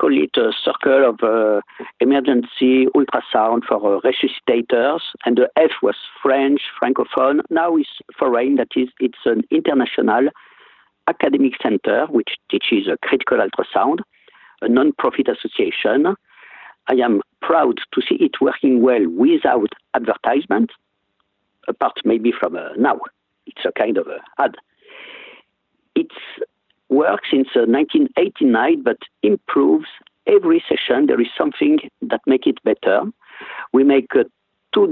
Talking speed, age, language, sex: 130 wpm, 50-69, English, male